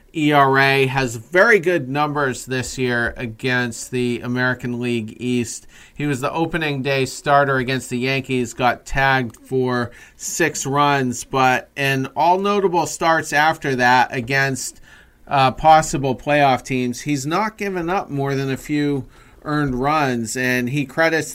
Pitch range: 125-155 Hz